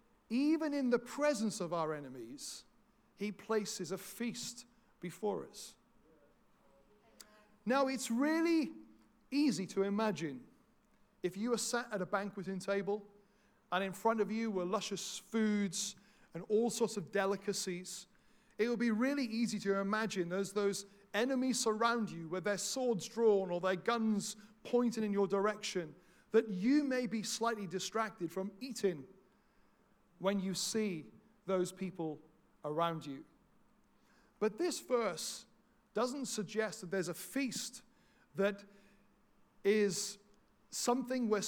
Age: 40-59